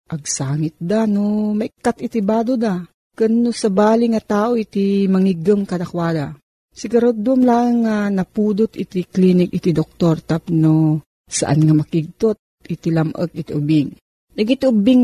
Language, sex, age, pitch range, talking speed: Filipino, female, 40-59, 170-215 Hz, 135 wpm